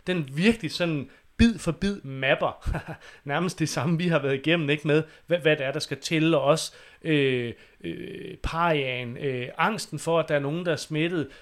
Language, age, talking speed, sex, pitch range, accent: English, 30-49, 200 wpm, male, 140-170 Hz, Danish